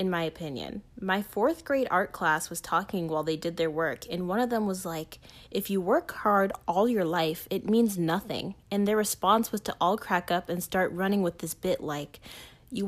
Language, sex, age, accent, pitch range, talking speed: English, female, 20-39, American, 170-215 Hz, 220 wpm